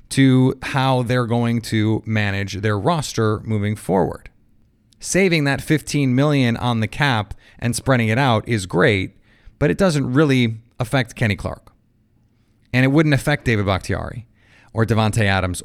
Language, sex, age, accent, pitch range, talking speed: English, male, 30-49, American, 110-135 Hz, 150 wpm